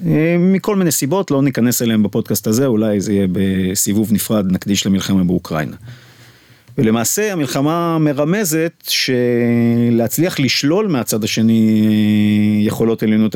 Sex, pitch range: male, 110-145 Hz